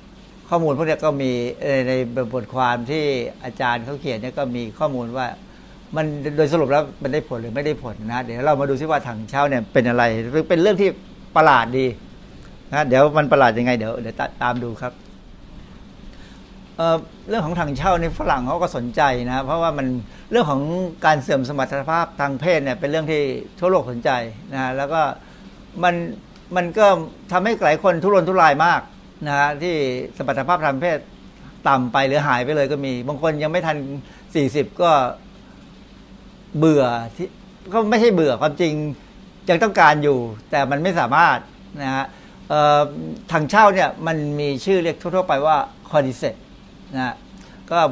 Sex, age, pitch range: male, 60-79, 130-170 Hz